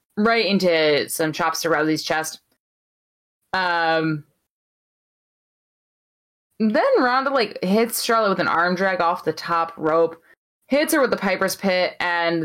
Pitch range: 165-200 Hz